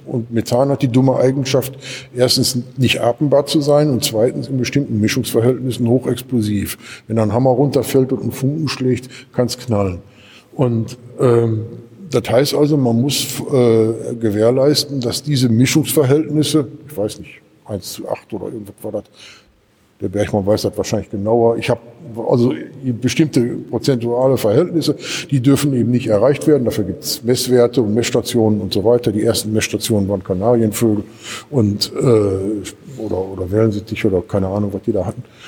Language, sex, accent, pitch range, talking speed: German, male, German, 110-130 Hz, 160 wpm